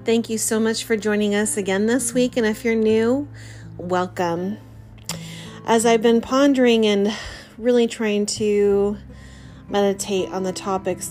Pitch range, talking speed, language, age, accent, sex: 180-215 Hz, 145 wpm, English, 30-49, American, female